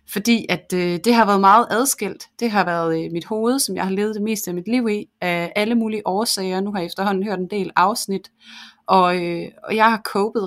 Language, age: Danish, 30-49